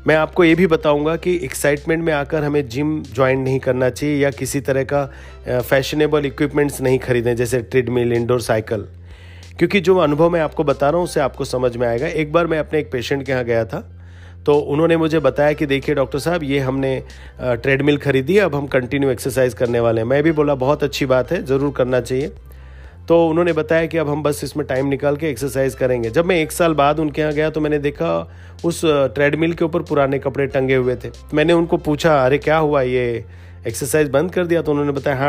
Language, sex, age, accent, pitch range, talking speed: Hindi, male, 40-59, native, 125-150 Hz, 220 wpm